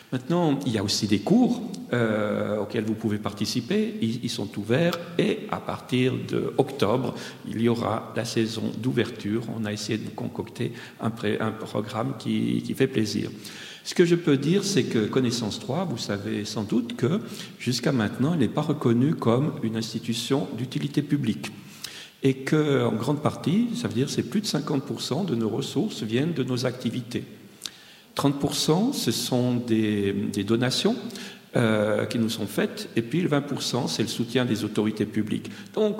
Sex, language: male, French